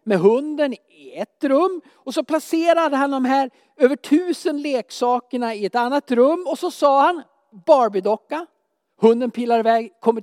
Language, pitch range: Swedish, 220-305 Hz